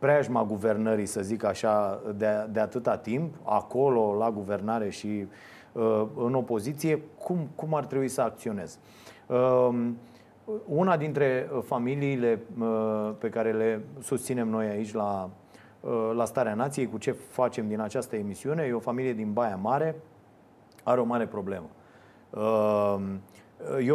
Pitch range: 105-125 Hz